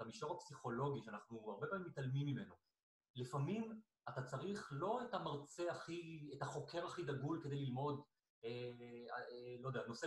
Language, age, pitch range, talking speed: Hebrew, 30-49, 130-170 Hz, 150 wpm